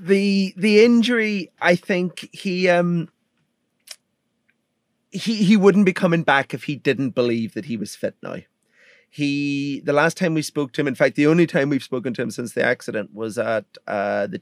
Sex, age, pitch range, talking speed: male, 30-49, 120-160 Hz, 190 wpm